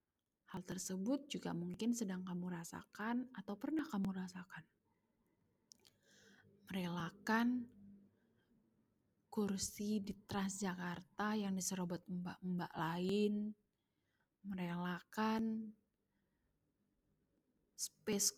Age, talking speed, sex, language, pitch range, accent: 20-39, 70 wpm, female, Indonesian, 180-215 Hz, native